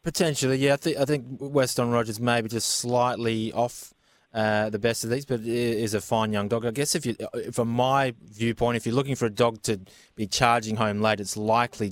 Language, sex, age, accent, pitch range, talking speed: English, male, 20-39, Australian, 105-125 Hz, 220 wpm